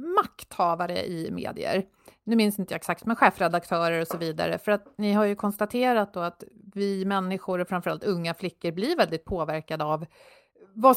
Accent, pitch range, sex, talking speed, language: native, 175-230 Hz, female, 170 wpm, Swedish